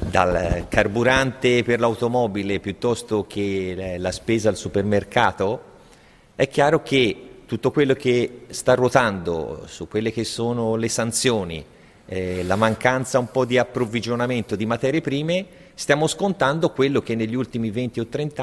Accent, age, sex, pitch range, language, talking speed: native, 30-49, male, 110-140 Hz, Italian, 140 wpm